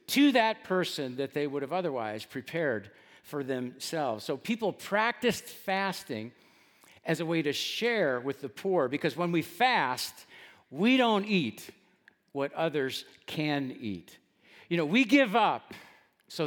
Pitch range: 135-200 Hz